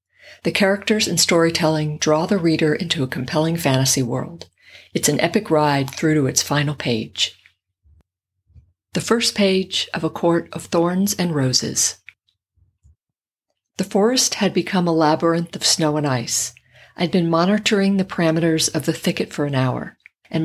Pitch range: 140-180 Hz